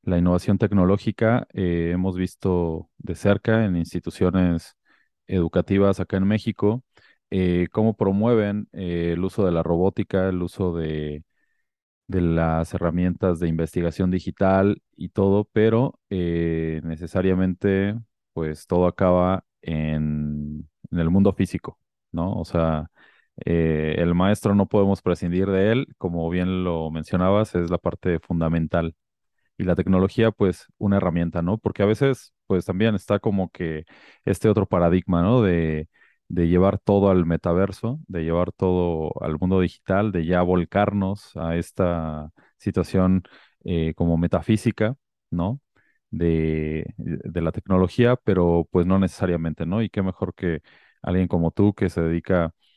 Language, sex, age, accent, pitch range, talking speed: Spanish, male, 30-49, Mexican, 85-100 Hz, 140 wpm